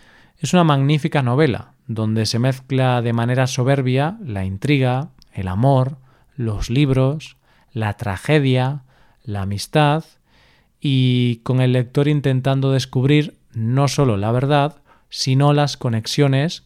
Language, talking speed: Spanish, 120 wpm